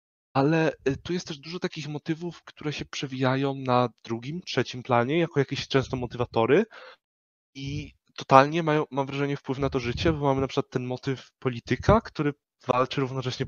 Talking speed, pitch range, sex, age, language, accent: 160 wpm, 115-145 Hz, male, 20-39, Polish, native